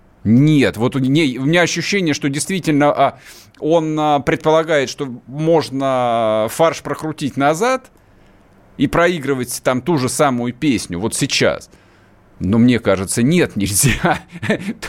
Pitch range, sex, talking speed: 110-160 Hz, male, 125 wpm